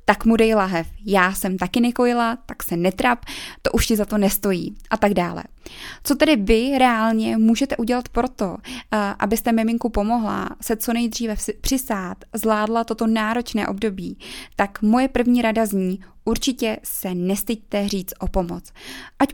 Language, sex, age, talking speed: Czech, female, 20-39, 155 wpm